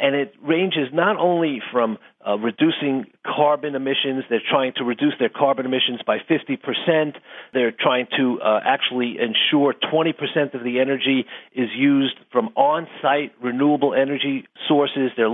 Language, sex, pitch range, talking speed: English, male, 130-160 Hz, 145 wpm